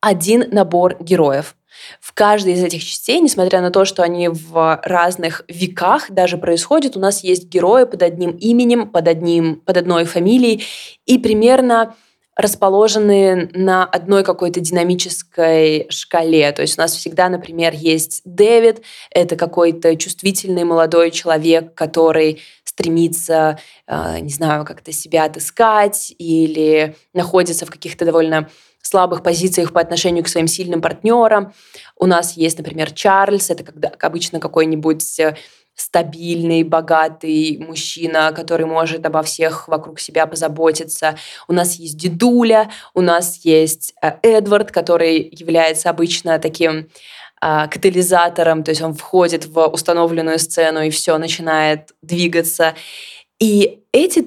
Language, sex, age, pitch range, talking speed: Russian, female, 20-39, 160-185 Hz, 125 wpm